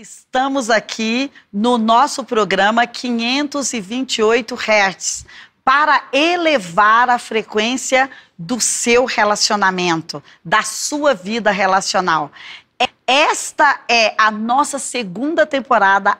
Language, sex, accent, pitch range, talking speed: Portuguese, female, Brazilian, 225-290 Hz, 90 wpm